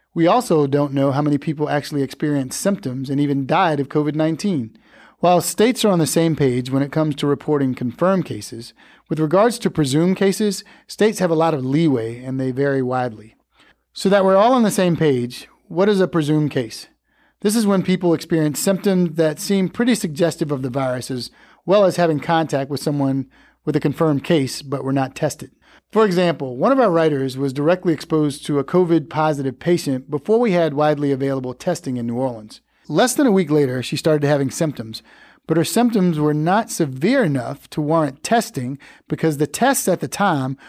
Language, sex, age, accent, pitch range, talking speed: English, male, 40-59, American, 140-175 Hz, 195 wpm